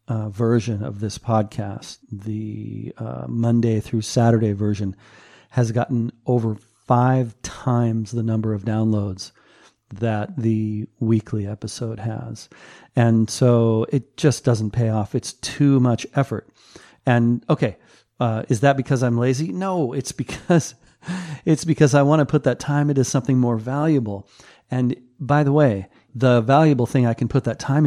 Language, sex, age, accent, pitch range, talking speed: English, male, 40-59, American, 110-130 Hz, 155 wpm